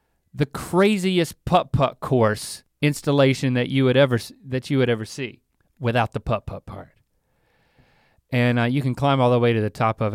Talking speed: 190 wpm